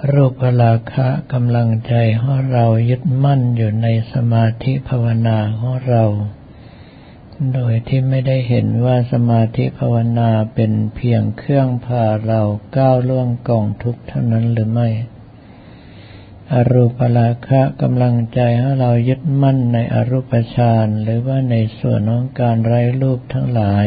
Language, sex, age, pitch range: Thai, male, 60-79, 110-125 Hz